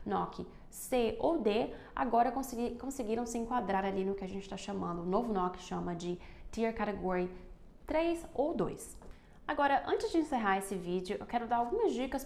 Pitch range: 195-270 Hz